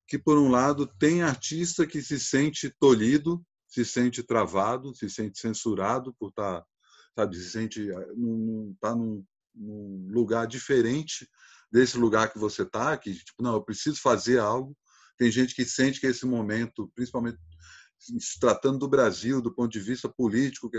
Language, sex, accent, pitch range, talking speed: Portuguese, male, Brazilian, 115-150 Hz, 160 wpm